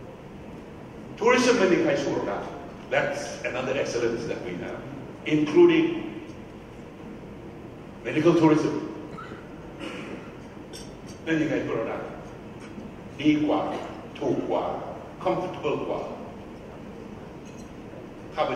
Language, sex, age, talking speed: English, male, 60-79, 40 wpm